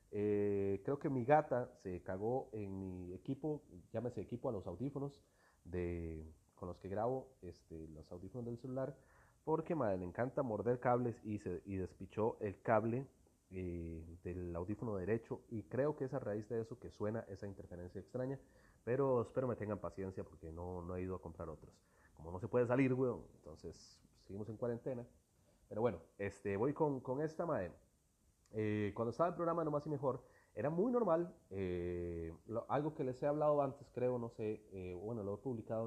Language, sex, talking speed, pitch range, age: Spanish, male, 190 wpm, 95-125 Hz, 30-49